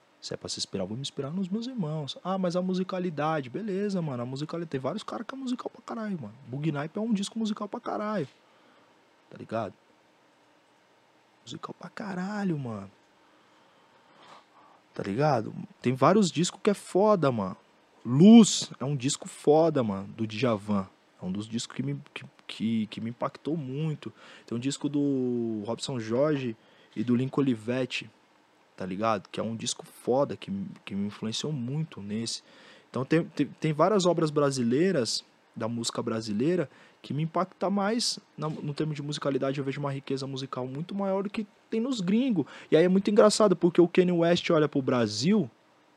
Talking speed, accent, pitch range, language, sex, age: 180 wpm, Brazilian, 120-185 Hz, Portuguese, male, 20-39